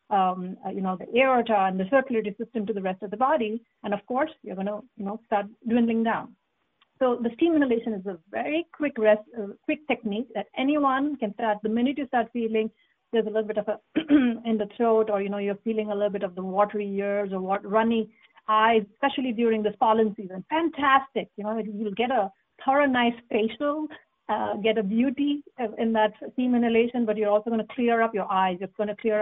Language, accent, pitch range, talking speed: English, Indian, 200-240 Hz, 220 wpm